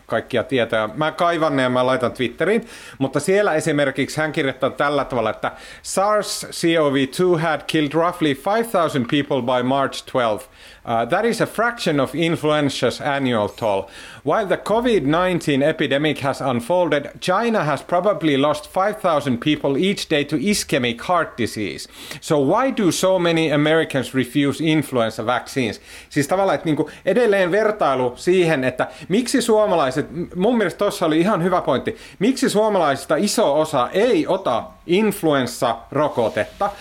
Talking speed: 140 wpm